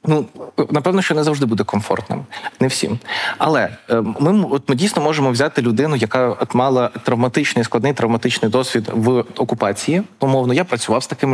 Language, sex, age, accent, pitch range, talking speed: Ukrainian, male, 20-39, native, 125-165 Hz, 160 wpm